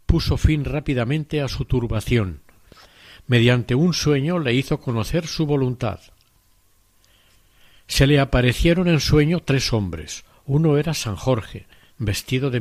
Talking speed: 130 wpm